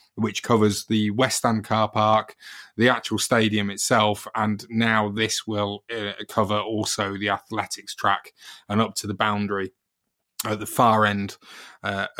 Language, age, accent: English, 20-39, British